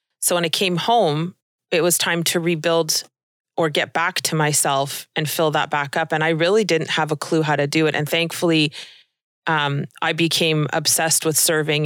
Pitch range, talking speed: 150-175 Hz, 195 wpm